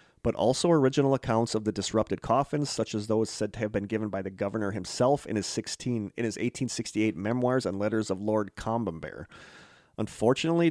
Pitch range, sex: 100-120 Hz, male